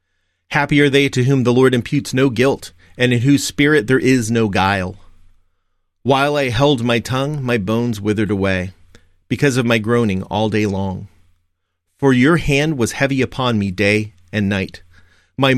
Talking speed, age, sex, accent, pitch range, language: 175 wpm, 40-59, male, American, 90-125 Hz, English